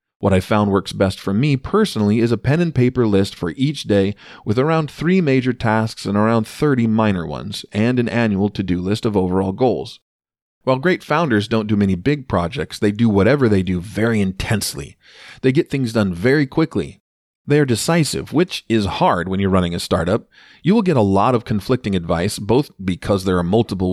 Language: English